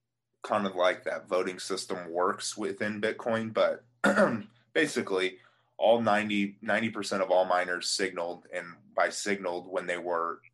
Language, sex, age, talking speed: English, male, 20-39, 140 wpm